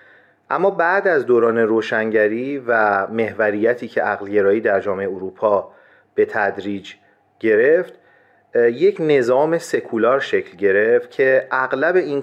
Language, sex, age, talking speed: Persian, male, 40-59, 115 wpm